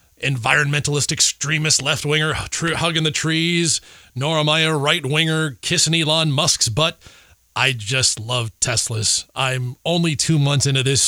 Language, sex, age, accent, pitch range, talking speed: English, male, 30-49, American, 115-155 Hz, 140 wpm